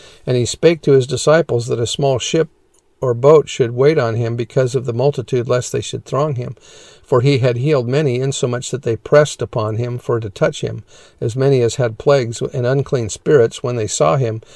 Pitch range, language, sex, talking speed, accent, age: 115-140 Hz, English, male, 215 wpm, American, 50-69